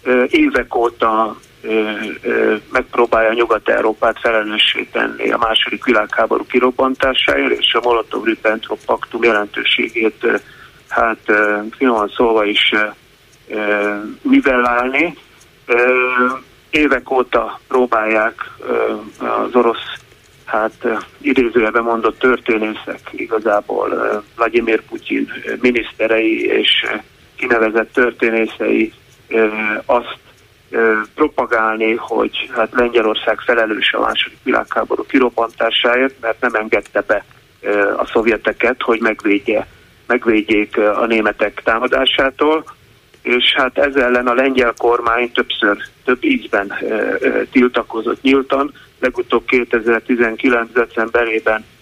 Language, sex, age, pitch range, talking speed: Hungarian, male, 30-49, 110-130 Hz, 90 wpm